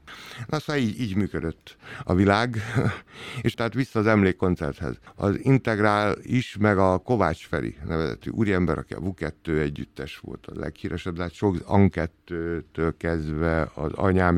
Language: Hungarian